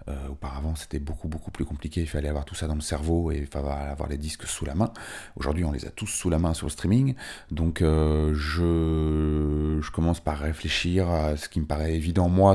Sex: male